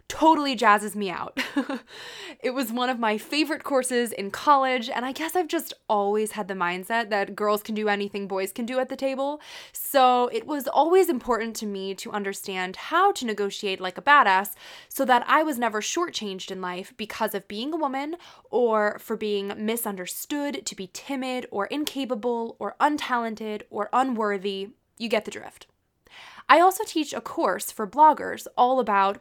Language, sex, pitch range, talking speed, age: English, female, 205-285 Hz, 180 wpm, 20-39